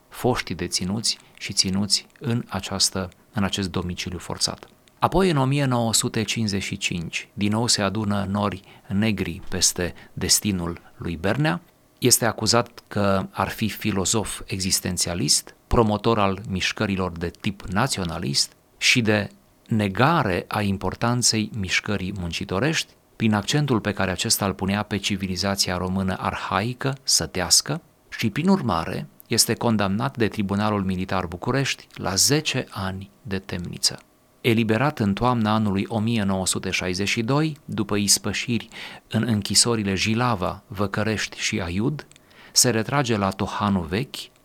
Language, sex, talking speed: Romanian, male, 115 wpm